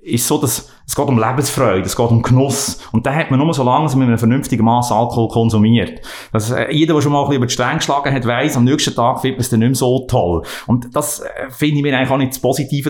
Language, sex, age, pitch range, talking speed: German, male, 30-49, 120-145 Hz, 270 wpm